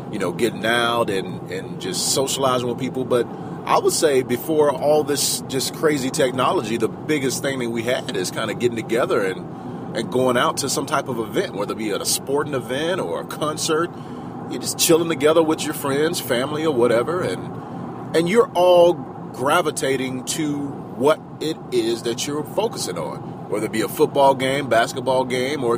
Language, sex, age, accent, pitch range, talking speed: English, male, 30-49, American, 130-175 Hz, 190 wpm